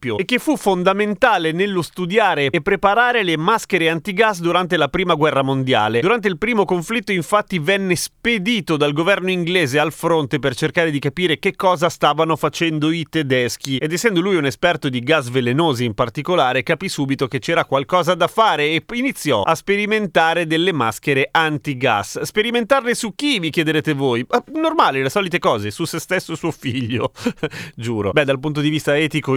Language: Italian